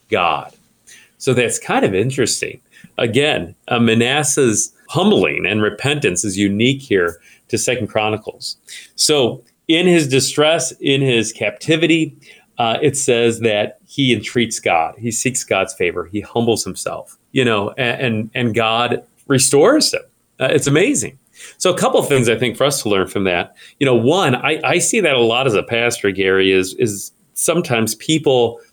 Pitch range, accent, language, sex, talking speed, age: 110-135 Hz, American, English, male, 165 wpm, 40-59